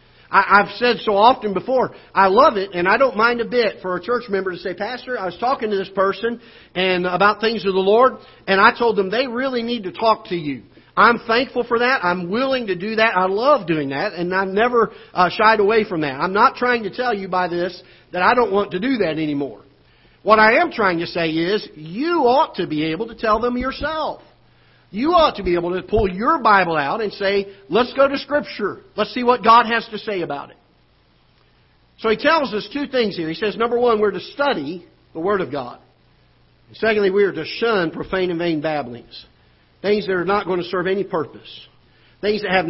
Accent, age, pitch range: American, 50-69, 175-230 Hz